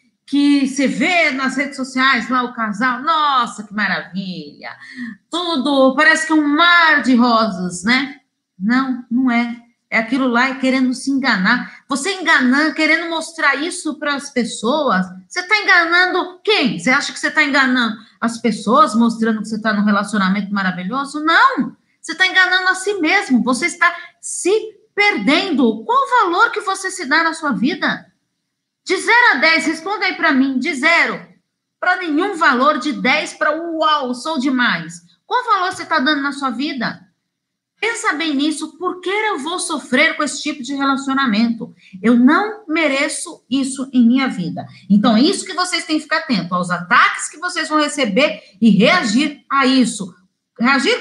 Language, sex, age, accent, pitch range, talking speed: Portuguese, female, 40-59, Brazilian, 240-320 Hz, 170 wpm